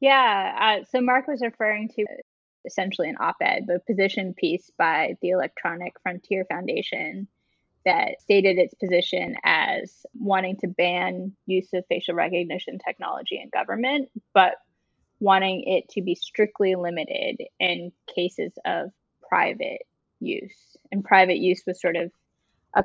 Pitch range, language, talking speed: 185-230 Hz, English, 135 wpm